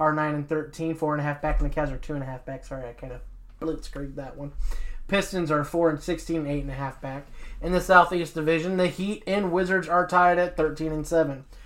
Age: 20-39